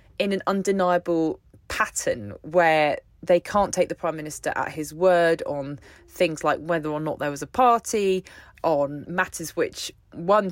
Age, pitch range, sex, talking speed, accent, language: 20-39, 155-200 Hz, female, 160 wpm, British, English